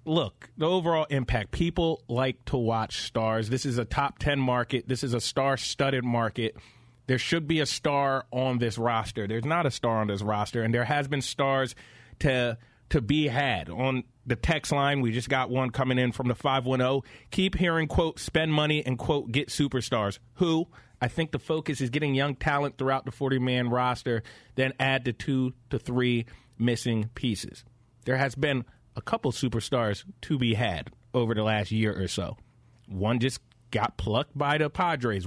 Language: English